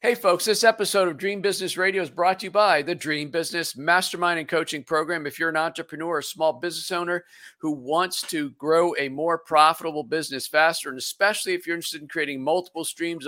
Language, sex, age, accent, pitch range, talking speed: English, male, 50-69, American, 145-180 Hz, 210 wpm